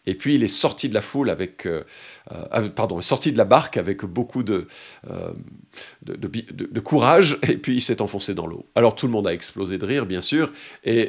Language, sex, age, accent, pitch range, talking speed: French, male, 50-69, French, 100-140 Hz, 180 wpm